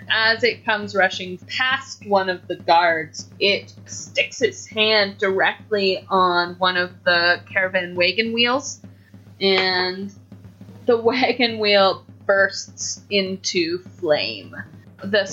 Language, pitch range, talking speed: English, 180-230 Hz, 115 wpm